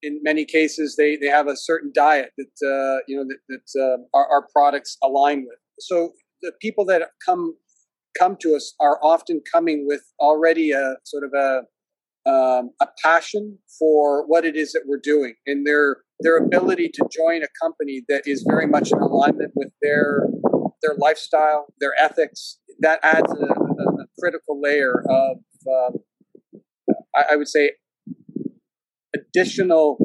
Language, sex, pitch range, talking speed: English, male, 145-180 Hz, 160 wpm